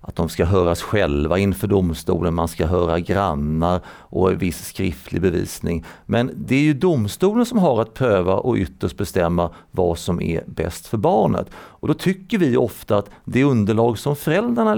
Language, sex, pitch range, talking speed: Swedish, male, 95-145 Hz, 180 wpm